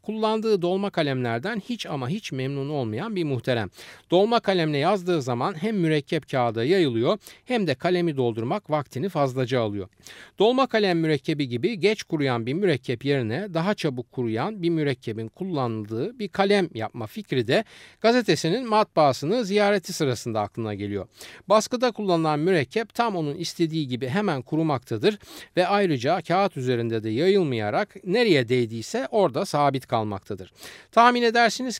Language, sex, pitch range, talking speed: Turkish, male, 130-210 Hz, 140 wpm